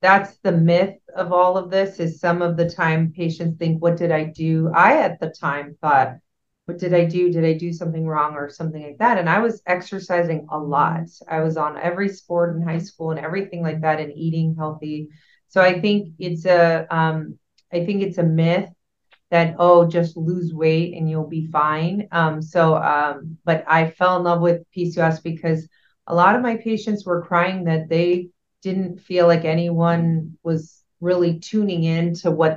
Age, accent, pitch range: 30-49, American, 160-180 Hz